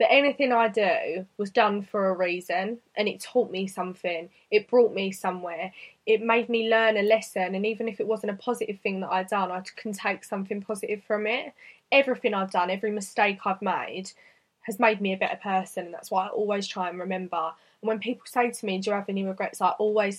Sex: female